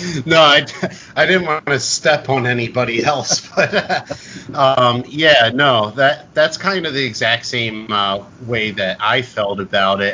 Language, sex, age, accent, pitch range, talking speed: English, male, 30-49, American, 100-130 Hz, 170 wpm